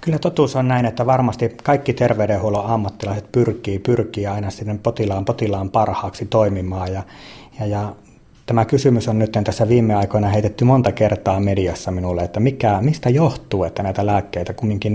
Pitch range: 100-120 Hz